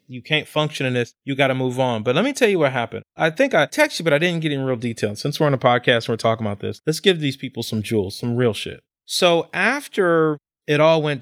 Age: 30-49